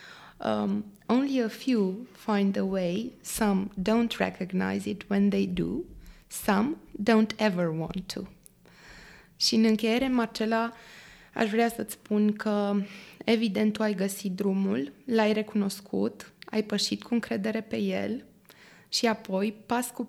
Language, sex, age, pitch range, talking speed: Romanian, female, 20-39, 195-225 Hz, 135 wpm